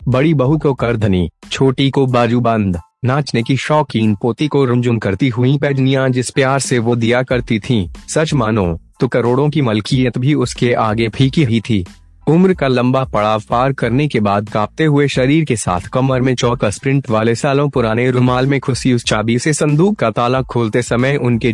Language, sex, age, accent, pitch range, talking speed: Hindi, male, 30-49, native, 110-135 Hz, 185 wpm